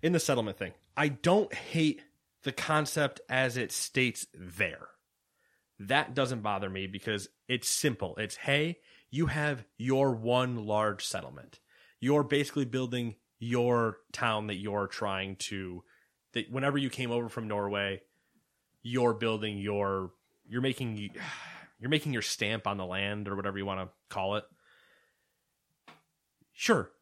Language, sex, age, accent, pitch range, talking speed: English, male, 20-39, American, 100-135 Hz, 140 wpm